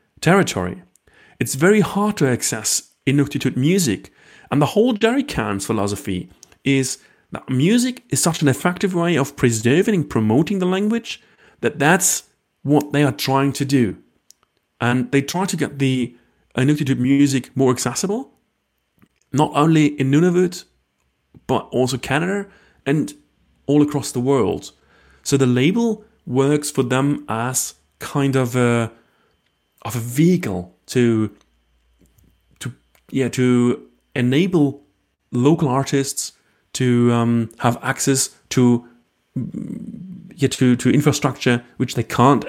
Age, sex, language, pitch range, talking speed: 30-49, male, English, 120-150 Hz, 125 wpm